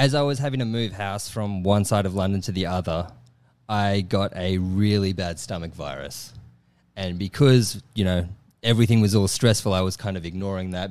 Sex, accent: male, Australian